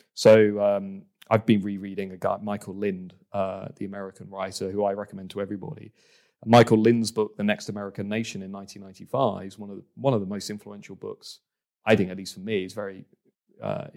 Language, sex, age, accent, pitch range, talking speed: English, male, 30-49, British, 95-110 Hz, 200 wpm